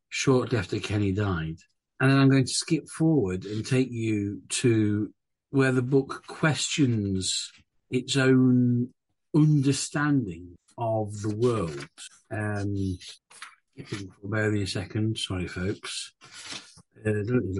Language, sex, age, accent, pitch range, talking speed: English, male, 50-69, British, 100-130 Hz, 110 wpm